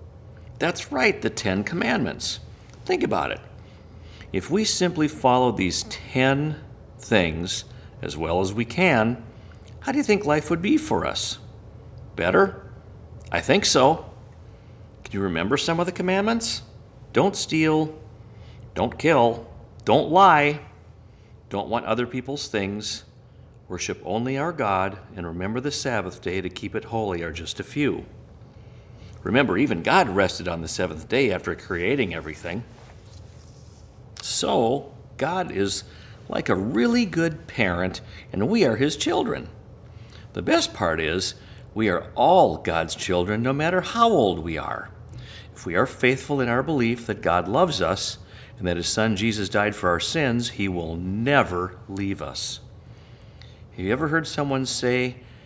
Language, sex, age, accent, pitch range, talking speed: English, male, 50-69, American, 95-125 Hz, 150 wpm